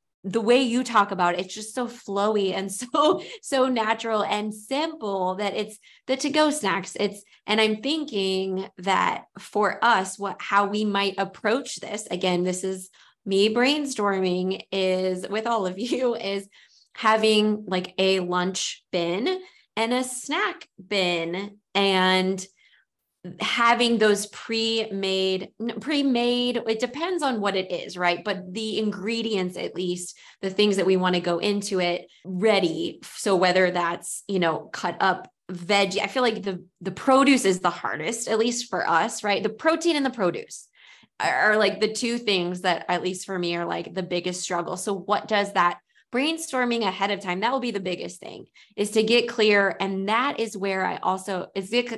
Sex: female